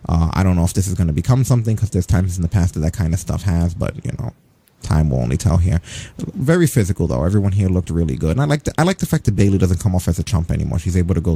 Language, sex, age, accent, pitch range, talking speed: English, male, 30-49, American, 90-115 Hz, 305 wpm